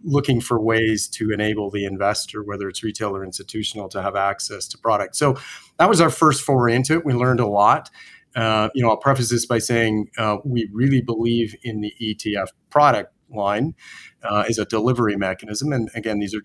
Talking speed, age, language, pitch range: 200 wpm, 30-49, English, 100-115 Hz